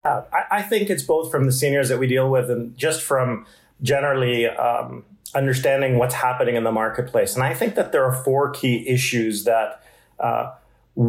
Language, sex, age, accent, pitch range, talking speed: English, male, 40-59, American, 120-135 Hz, 180 wpm